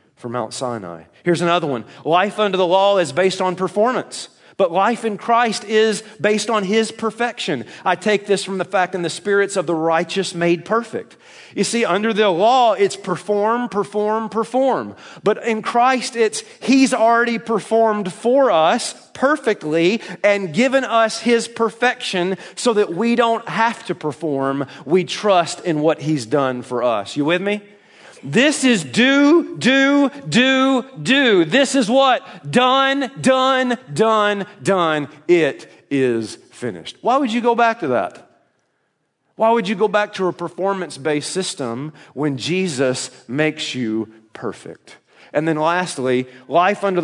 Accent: American